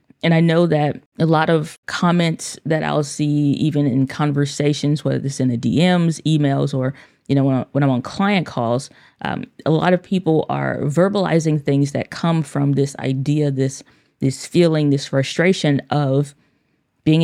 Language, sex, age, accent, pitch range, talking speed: English, female, 20-39, American, 140-165 Hz, 180 wpm